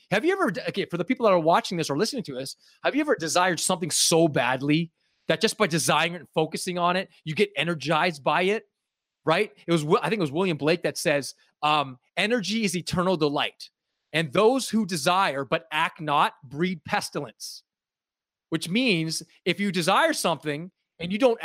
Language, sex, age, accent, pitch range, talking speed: English, male, 30-49, American, 160-210 Hz, 195 wpm